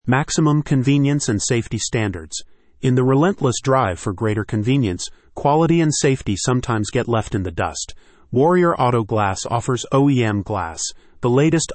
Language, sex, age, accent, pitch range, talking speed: English, male, 40-59, American, 105-135 Hz, 150 wpm